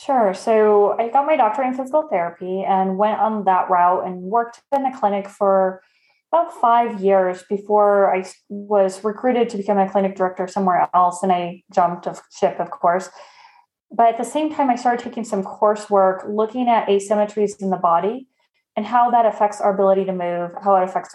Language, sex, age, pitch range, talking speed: English, female, 20-39, 190-225 Hz, 190 wpm